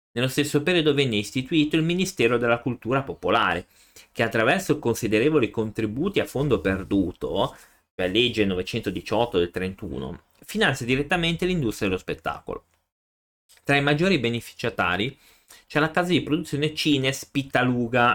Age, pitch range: 30-49, 100-140 Hz